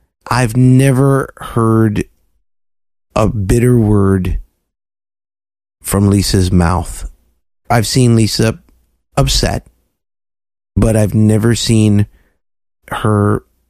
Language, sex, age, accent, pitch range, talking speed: English, male, 30-49, American, 90-110 Hz, 80 wpm